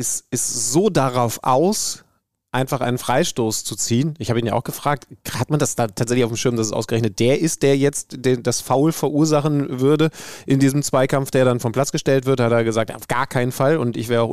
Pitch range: 120-145 Hz